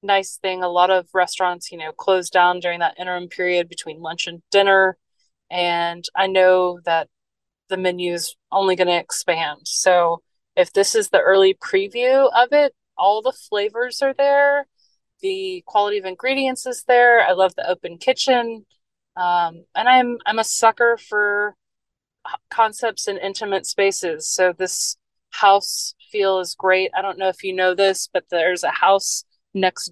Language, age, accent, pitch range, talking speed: English, 30-49, American, 175-220 Hz, 165 wpm